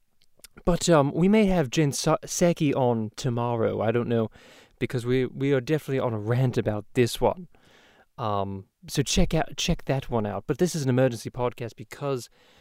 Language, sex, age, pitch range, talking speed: English, male, 20-39, 125-160 Hz, 180 wpm